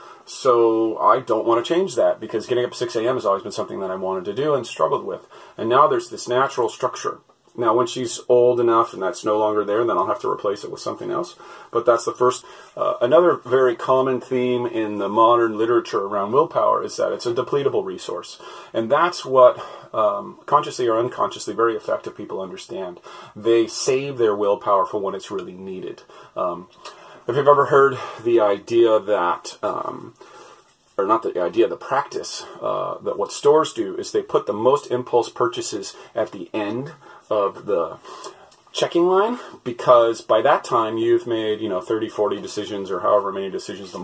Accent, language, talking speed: American, English, 190 wpm